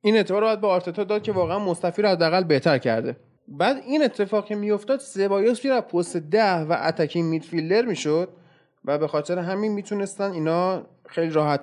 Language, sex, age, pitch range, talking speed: Persian, male, 20-39, 155-210 Hz, 175 wpm